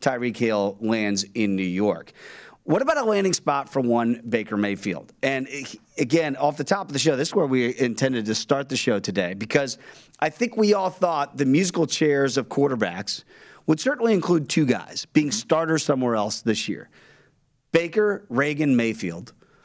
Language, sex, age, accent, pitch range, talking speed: English, male, 40-59, American, 120-175 Hz, 175 wpm